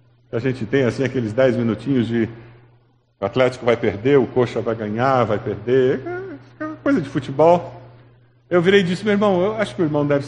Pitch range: 120-190 Hz